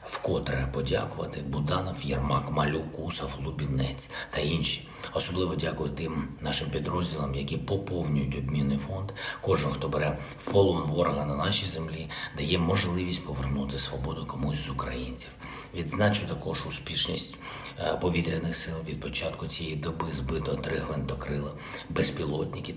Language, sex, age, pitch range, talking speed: Ukrainian, male, 50-69, 70-85 Hz, 125 wpm